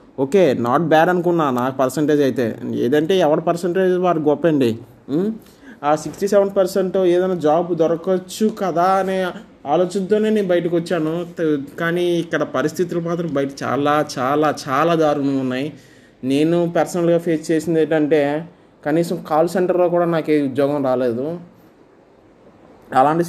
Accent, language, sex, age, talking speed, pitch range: native, Telugu, male, 20-39, 130 wpm, 140-175 Hz